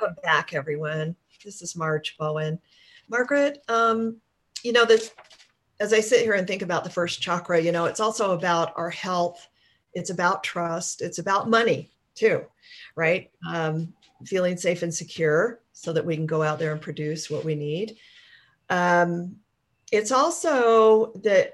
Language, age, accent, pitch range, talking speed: English, 40-59, American, 160-215 Hz, 160 wpm